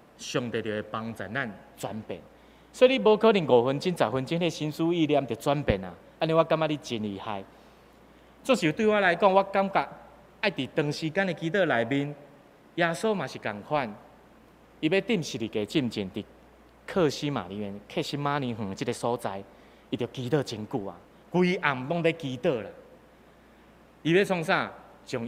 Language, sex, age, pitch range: Chinese, male, 30-49, 125-195 Hz